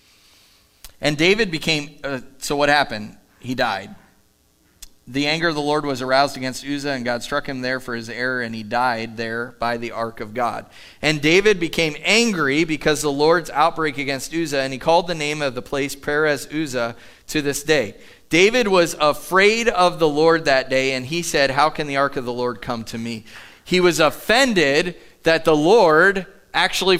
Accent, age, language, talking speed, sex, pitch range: American, 30-49, English, 190 wpm, male, 130-165 Hz